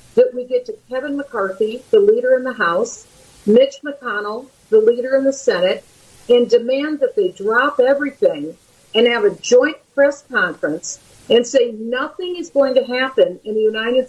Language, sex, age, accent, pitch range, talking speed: English, female, 50-69, American, 235-390 Hz, 170 wpm